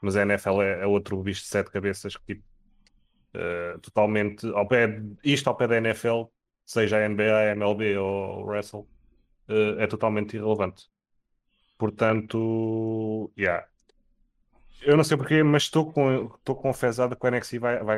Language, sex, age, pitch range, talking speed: Portuguese, male, 20-39, 105-125 Hz, 155 wpm